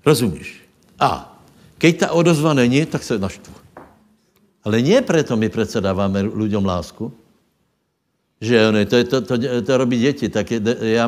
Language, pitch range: Slovak, 110-130 Hz